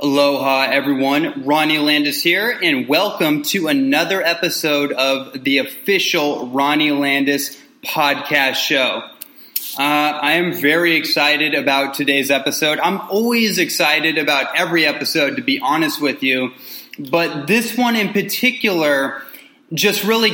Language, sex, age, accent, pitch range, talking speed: English, male, 20-39, American, 150-210 Hz, 125 wpm